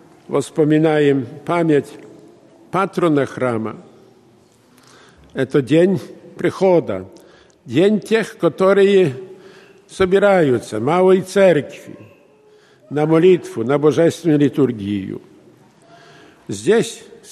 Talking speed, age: 70 wpm, 50-69